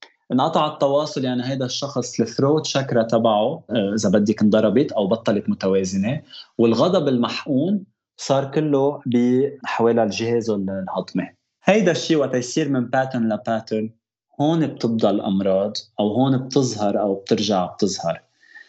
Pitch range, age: 115-150 Hz, 20-39